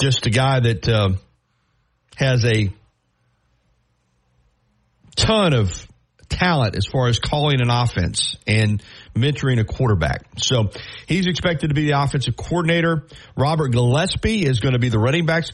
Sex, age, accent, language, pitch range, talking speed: male, 40-59, American, English, 110-140 Hz, 145 wpm